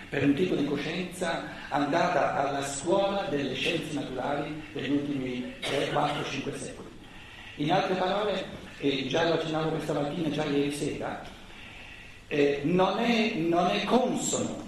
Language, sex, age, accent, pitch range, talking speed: Italian, male, 60-79, native, 145-185 Hz, 145 wpm